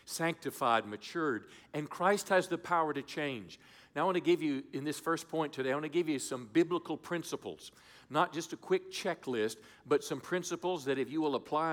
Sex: male